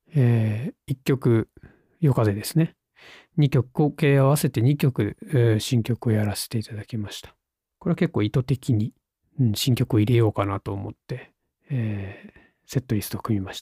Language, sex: Japanese, male